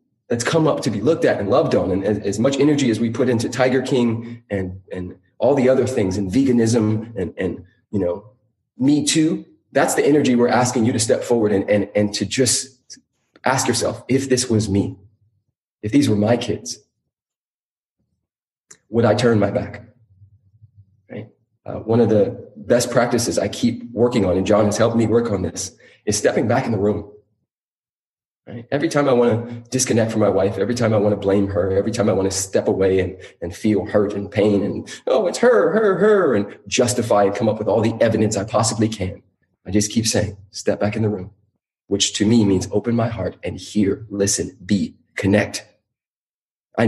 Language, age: English, 20-39